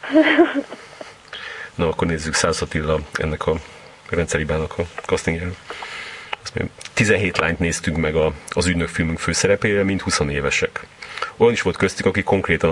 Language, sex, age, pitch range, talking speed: Hungarian, male, 30-49, 80-100 Hz, 135 wpm